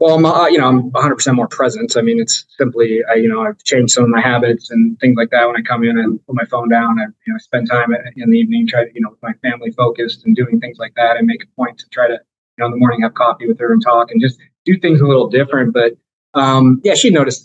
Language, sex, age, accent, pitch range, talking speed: English, male, 20-39, American, 120-135 Hz, 295 wpm